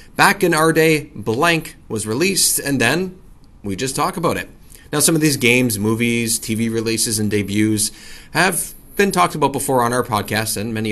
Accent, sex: American, male